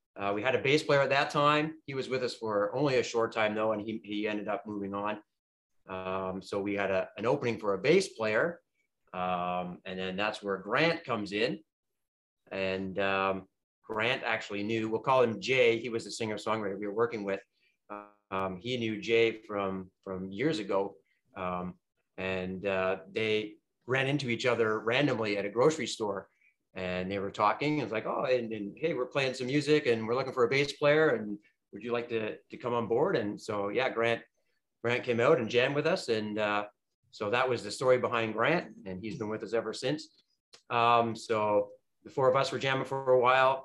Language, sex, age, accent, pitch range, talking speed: English, male, 30-49, American, 100-120 Hz, 210 wpm